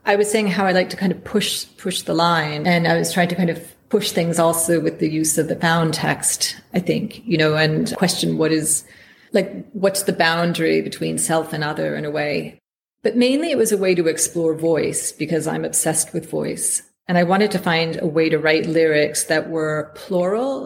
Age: 30-49